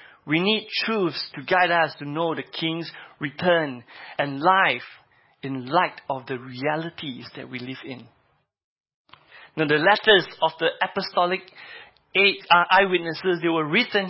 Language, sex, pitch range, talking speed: English, male, 145-185 Hz, 135 wpm